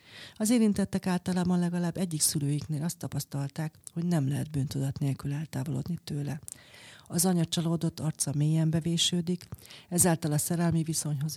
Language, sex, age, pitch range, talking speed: Hungarian, female, 40-59, 145-175 Hz, 130 wpm